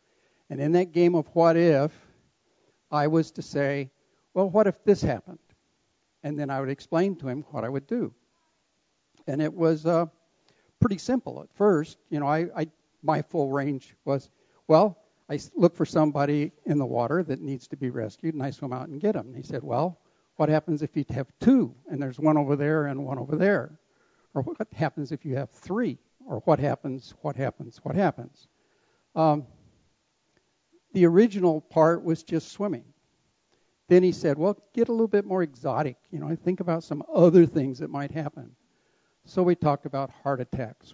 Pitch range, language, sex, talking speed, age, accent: 140-175 Hz, English, male, 190 wpm, 60-79, American